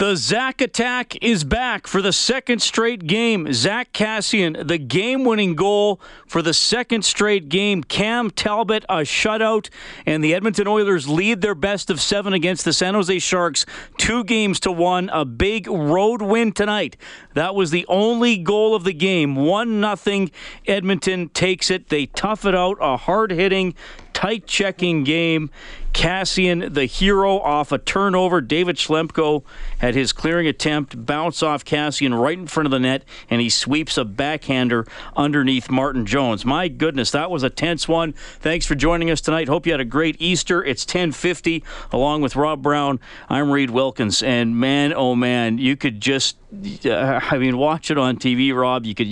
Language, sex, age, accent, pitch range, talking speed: English, male, 40-59, American, 145-200 Hz, 170 wpm